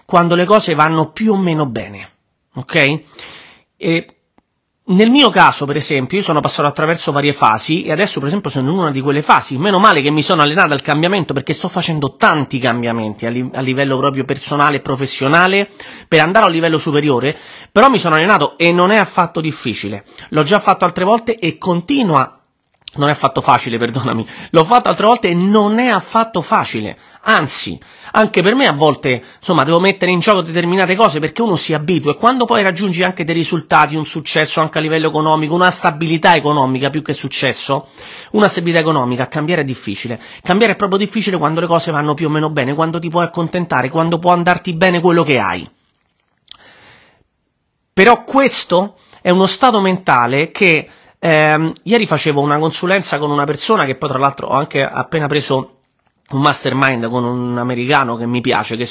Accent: native